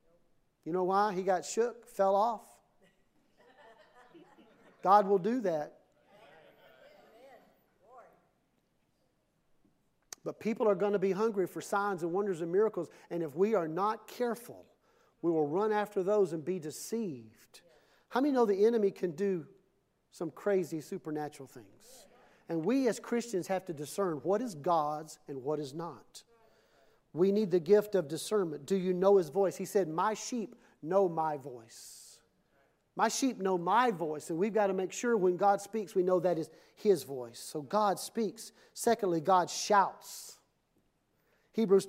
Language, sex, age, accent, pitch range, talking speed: English, male, 40-59, American, 180-235 Hz, 155 wpm